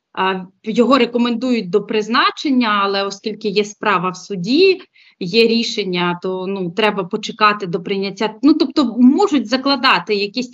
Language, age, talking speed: Ukrainian, 30-49, 130 wpm